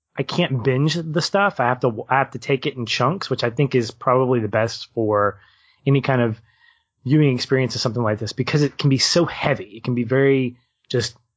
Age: 30-49